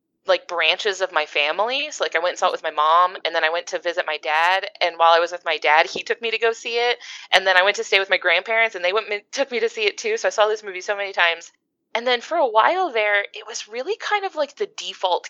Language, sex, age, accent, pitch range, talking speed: English, female, 20-39, American, 175-290 Hz, 305 wpm